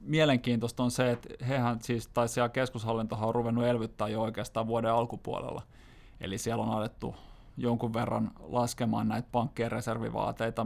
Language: Finnish